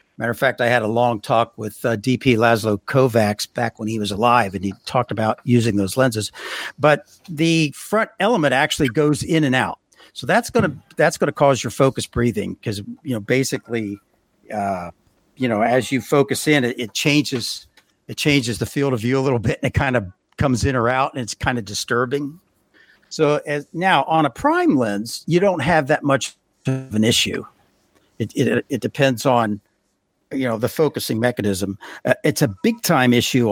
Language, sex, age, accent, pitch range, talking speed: English, male, 60-79, American, 115-140 Hz, 195 wpm